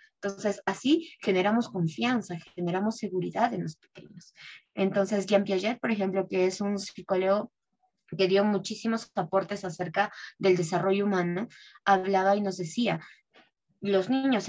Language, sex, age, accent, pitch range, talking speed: English, female, 20-39, Mexican, 185-235 Hz, 135 wpm